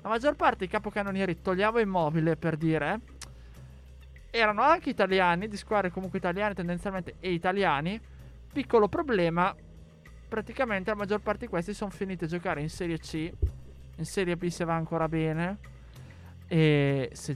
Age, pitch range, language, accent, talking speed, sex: 20-39, 160-210 Hz, Italian, native, 150 wpm, male